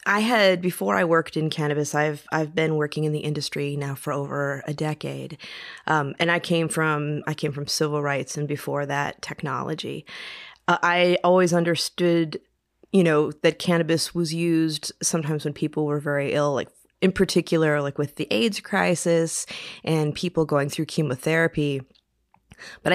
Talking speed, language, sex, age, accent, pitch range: 165 wpm, English, female, 20-39, American, 150-165 Hz